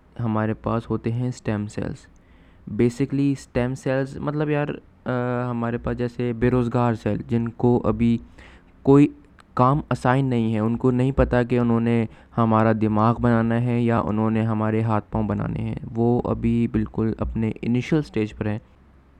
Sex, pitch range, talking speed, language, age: male, 110-125 Hz, 165 wpm, Urdu, 20-39